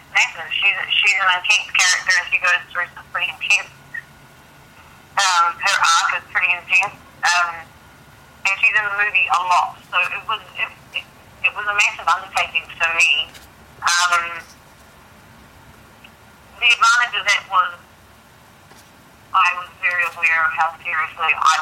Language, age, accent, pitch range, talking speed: English, 30-49, American, 160-195 Hz, 145 wpm